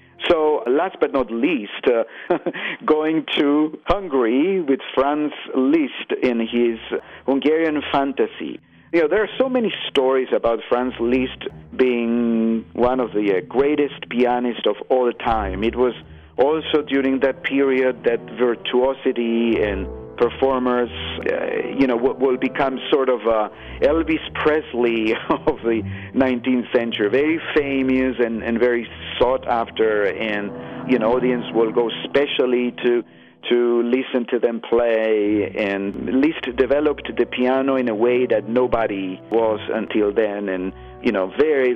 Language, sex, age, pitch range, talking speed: English, male, 50-69, 115-145 Hz, 140 wpm